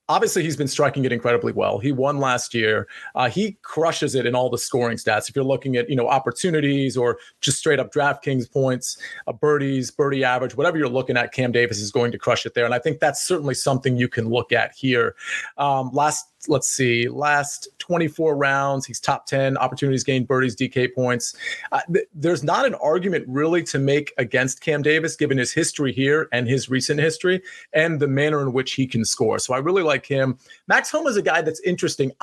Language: English